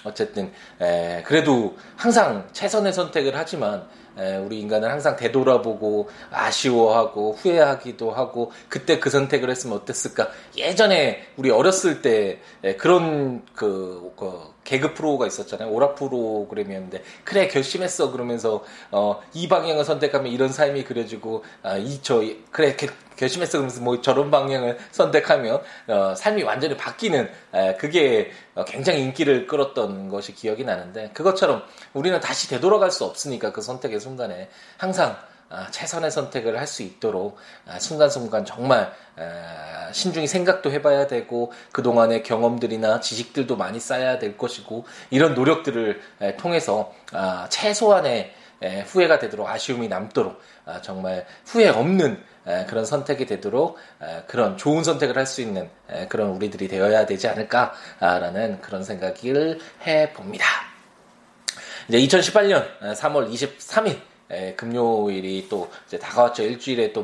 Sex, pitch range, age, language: male, 110-155 Hz, 20-39, Korean